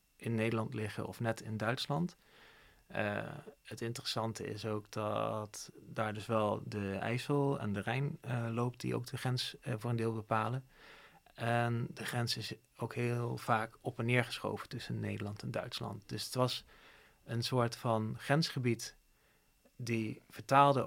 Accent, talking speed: Dutch, 160 wpm